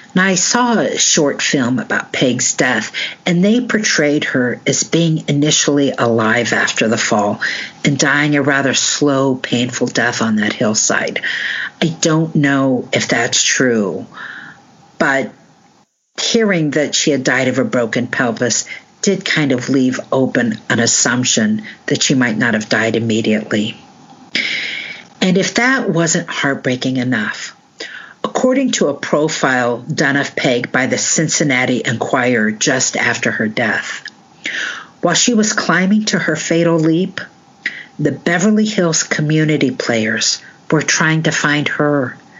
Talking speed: 140 wpm